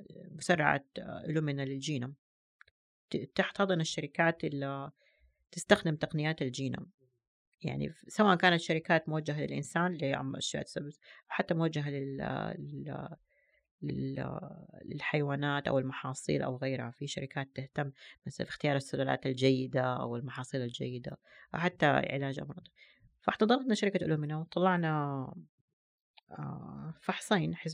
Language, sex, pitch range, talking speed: Arabic, female, 140-185 Hz, 95 wpm